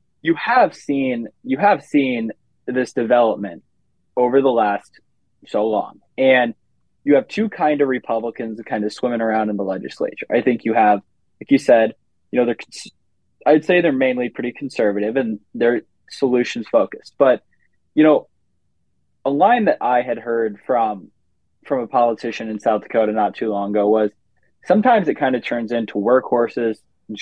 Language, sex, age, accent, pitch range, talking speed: English, male, 20-39, American, 110-135 Hz, 170 wpm